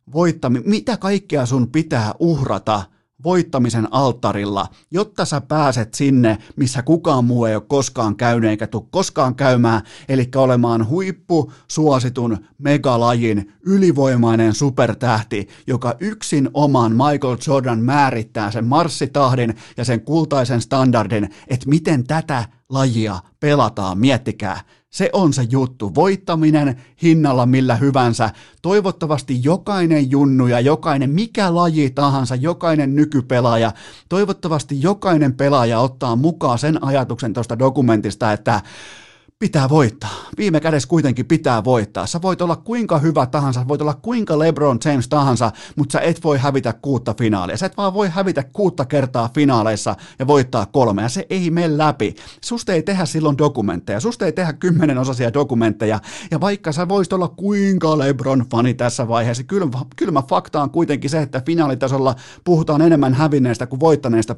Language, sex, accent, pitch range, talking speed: Finnish, male, native, 120-160 Hz, 140 wpm